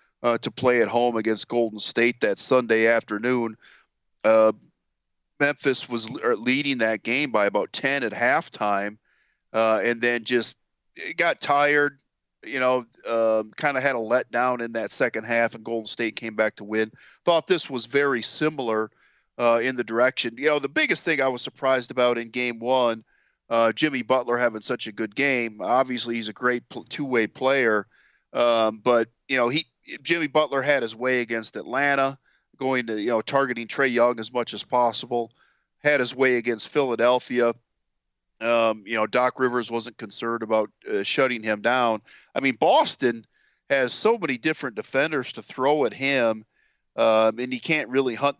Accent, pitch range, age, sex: American, 115-130 Hz, 40-59, male